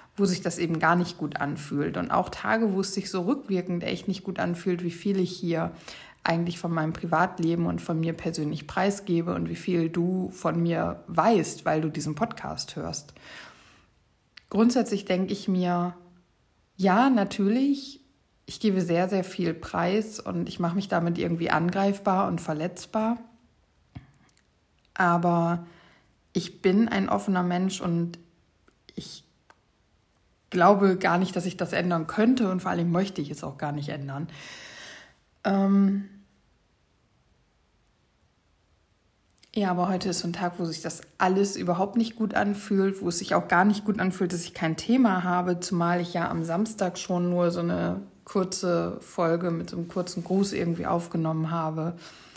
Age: 60-79